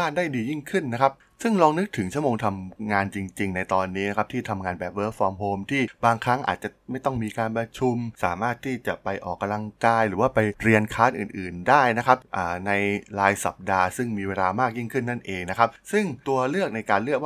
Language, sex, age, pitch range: Thai, male, 20-39, 95-125 Hz